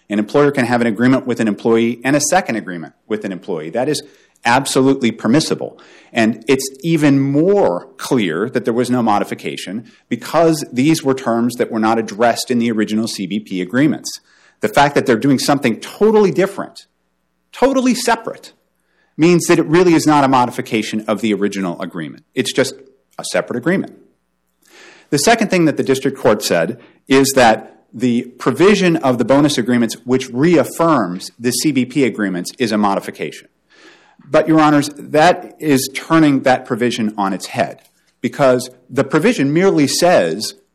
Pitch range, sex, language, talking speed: 115-155 Hz, male, English, 160 wpm